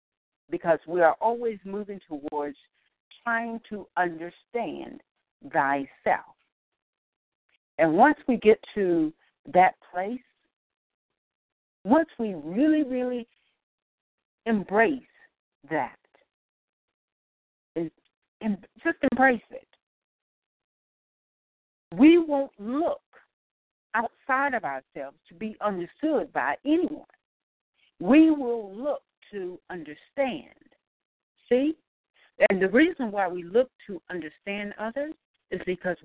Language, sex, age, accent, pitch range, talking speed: English, female, 50-69, American, 175-270 Hz, 90 wpm